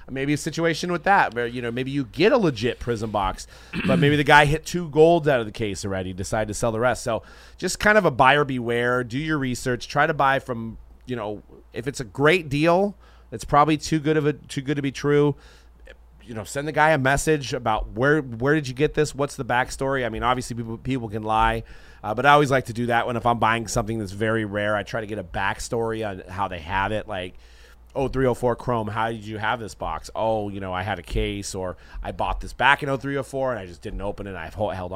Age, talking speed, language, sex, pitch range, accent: 30-49, 255 wpm, English, male, 105-140 Hz, American